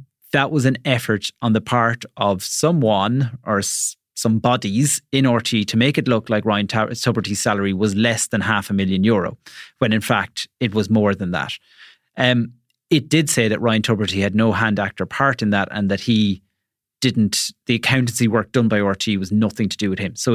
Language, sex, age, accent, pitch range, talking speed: English, male, 30-49, Irish, 105-130 Hz, 200 wpm